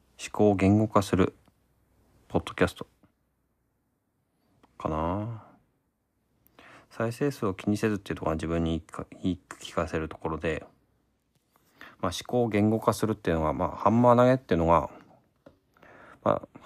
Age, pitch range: 40-59, 85-115 Hz